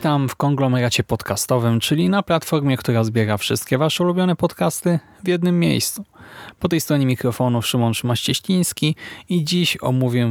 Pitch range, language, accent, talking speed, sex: 120-145 Hz, Polish, native, 145 wpm, male